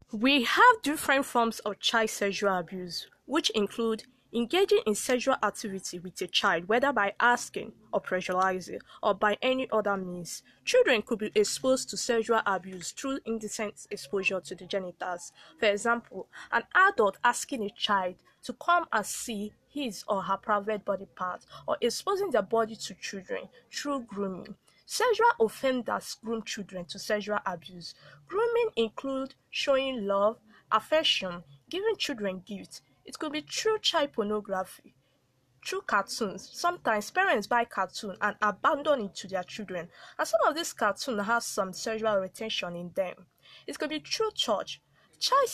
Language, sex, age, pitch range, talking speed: English, female, 20-39, 195-270 Hz, 150 wpm